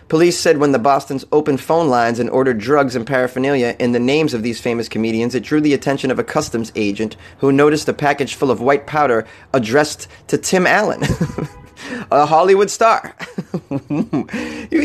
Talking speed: 180 wpm